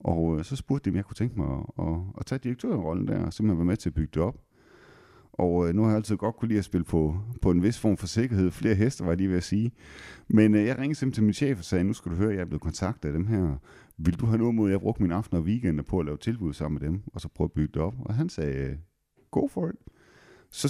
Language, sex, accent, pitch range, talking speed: Danish, male, native, 80-110 Hz, 295 wpm